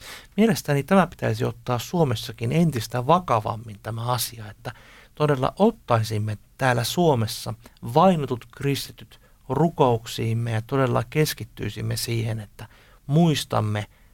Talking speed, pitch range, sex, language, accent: 100 wpm, 110-140 Hz, male, Finnish, native